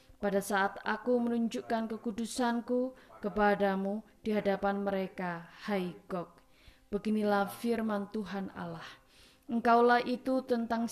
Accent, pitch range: native, 205-235 Hz